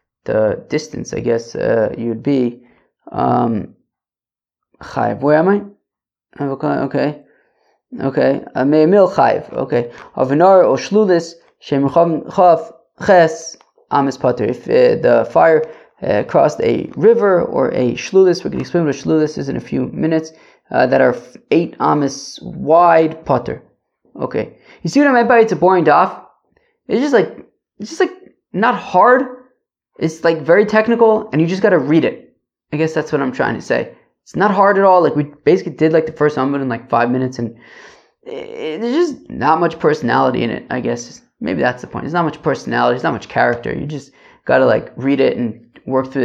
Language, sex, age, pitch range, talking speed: English, male, 20-39, 140-200 Hz, 180 wpm